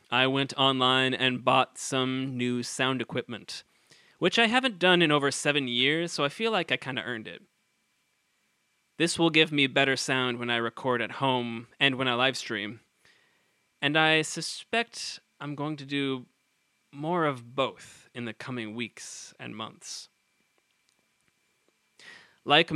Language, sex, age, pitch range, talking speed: English, male, 20-39, 125-155 Hz, 155 wpm